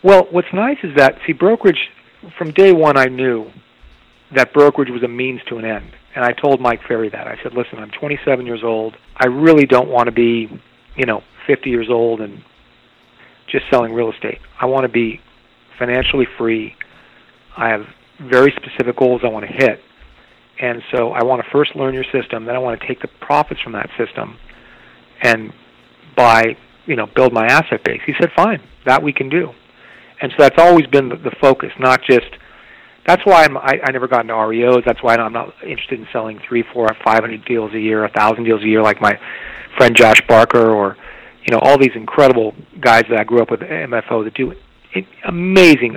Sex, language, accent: male, English, American